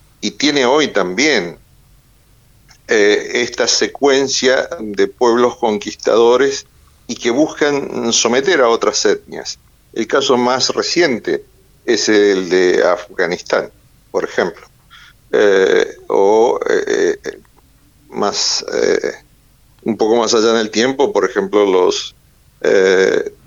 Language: Spanish